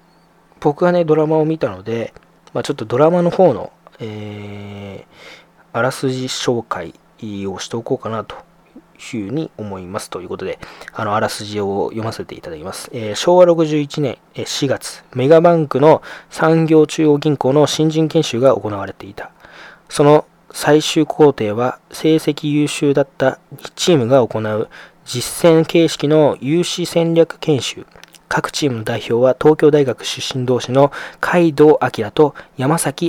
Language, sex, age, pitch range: Japanese, male, 20-39, 120-160 Hz